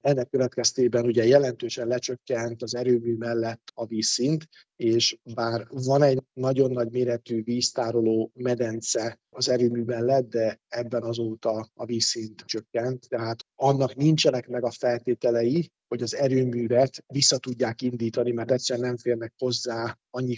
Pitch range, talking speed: 115-130 Hz, 135 wpm